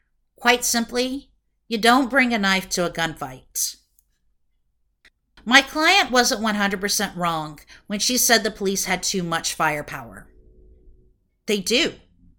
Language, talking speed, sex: English, 125 wpm, female